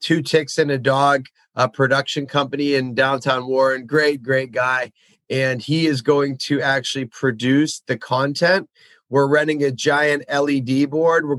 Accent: American